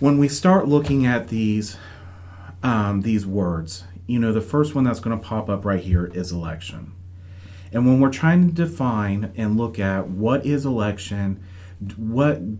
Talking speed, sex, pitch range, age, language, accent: 170 wpm, male, 90-120 Hz, 40-59, English, American